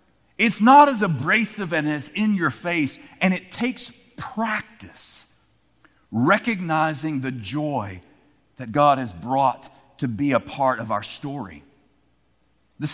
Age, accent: 50-69, American